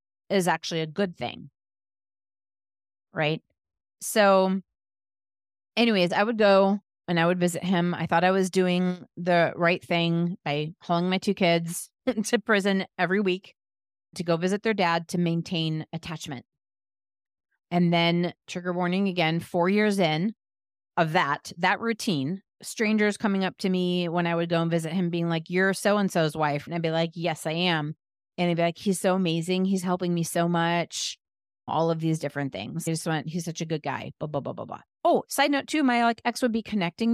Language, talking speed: English, 190 wpm